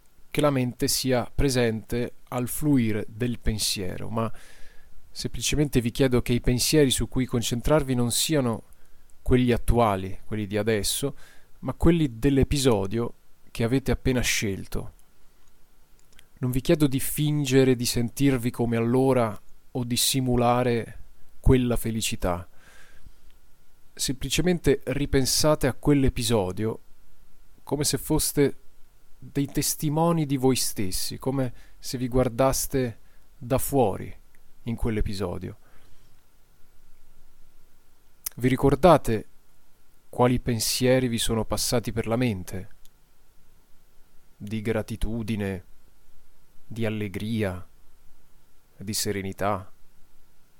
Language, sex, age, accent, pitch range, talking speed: Italian, male, 30-49, native, 90-130 Hz, 100 wpm